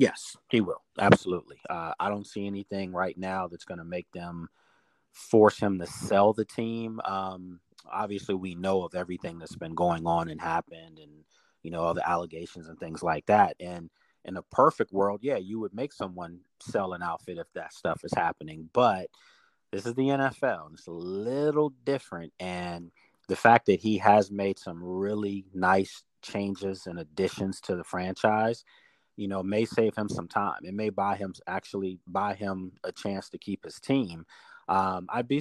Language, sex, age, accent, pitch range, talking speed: English, male, 30-49, American, 90-100 Hz, 185 wpm